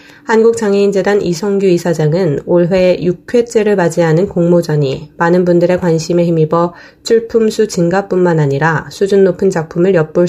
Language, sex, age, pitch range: Korean, female, 20-39, 160-200 Hz